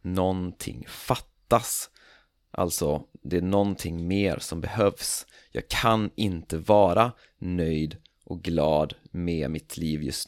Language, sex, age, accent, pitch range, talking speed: Swedish, male, 30-49, native, 85-100 Hz, 115 wpm